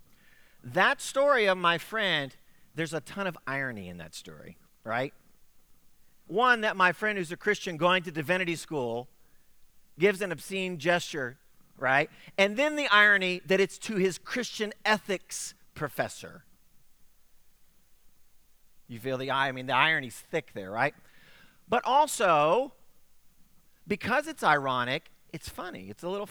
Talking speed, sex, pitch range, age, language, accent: 140 wpm, male, 155-215 Hz, 40-59, English, American